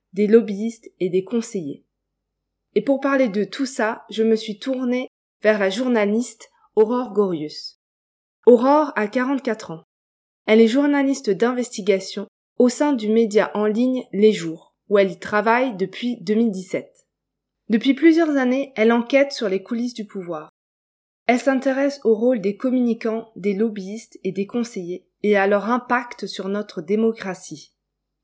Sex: female